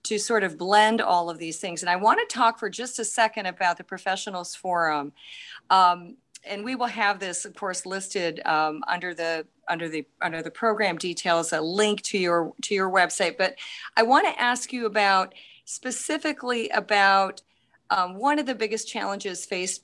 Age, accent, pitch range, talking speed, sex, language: 40-59, American, 175-210 Hz, 190 wpm, female, English